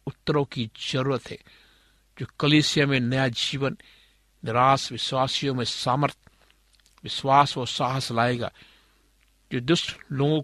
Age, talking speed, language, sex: 50-69, 115 wpm, Hindi, male